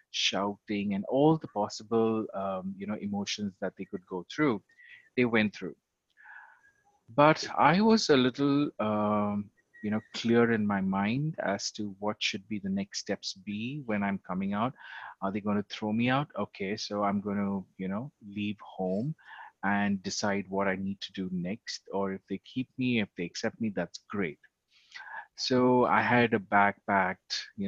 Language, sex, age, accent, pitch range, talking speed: English, male, 30-49, Indian, 100-125 Hz, 180 wpm